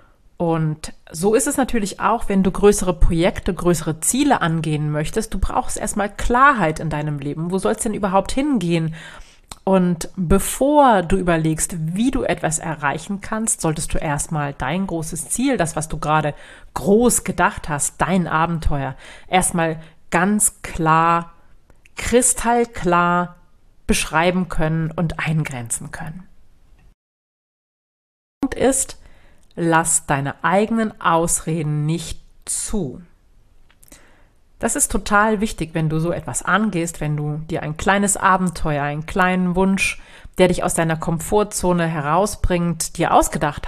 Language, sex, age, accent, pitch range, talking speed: German, female, 30-49, German, 155-195 Hz, 130 wpm